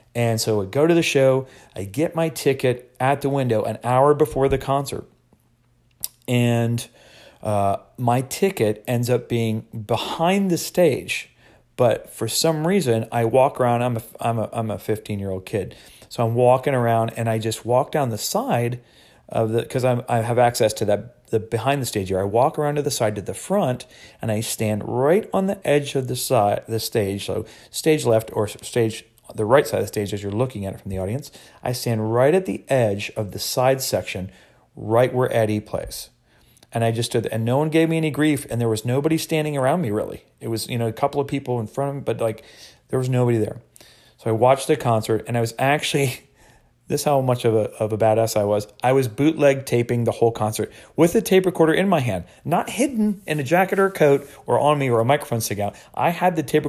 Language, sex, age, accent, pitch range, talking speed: English, male, 40-59, American, 110-140 Hz, 230 wpm